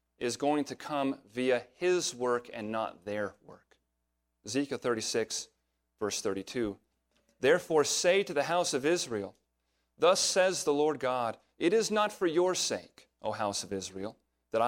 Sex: male